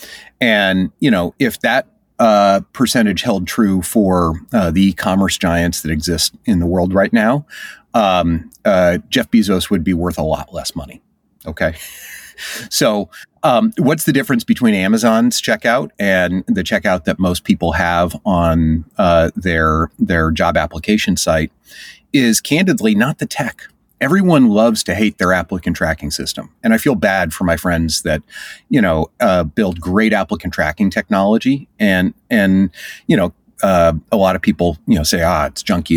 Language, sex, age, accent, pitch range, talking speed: English, male, 30-49, American, 85-130 Hz, 165 wpm